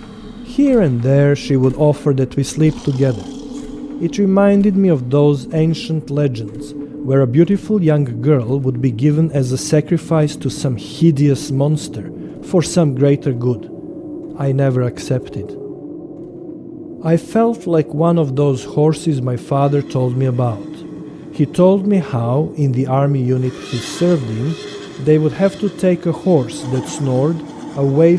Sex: male